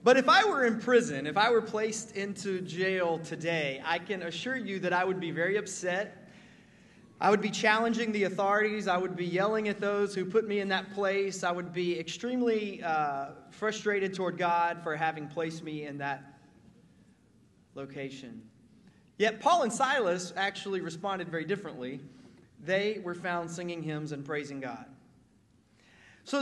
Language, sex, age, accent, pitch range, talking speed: English, male, 30-49, American, 165-215 Hz, 165 wpm